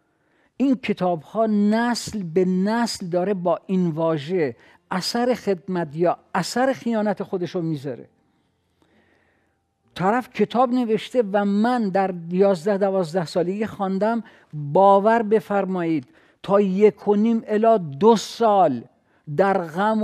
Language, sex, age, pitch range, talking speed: Persian, male, 50-69, 175-220 Hz, 115 wpm